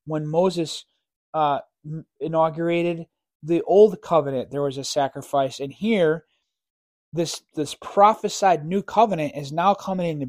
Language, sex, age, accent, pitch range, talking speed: English, male, 30-49, American, 150-190 Hz, 130 wpm